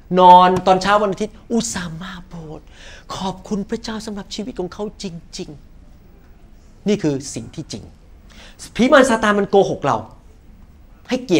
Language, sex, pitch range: Thai, male, 150-230 Hz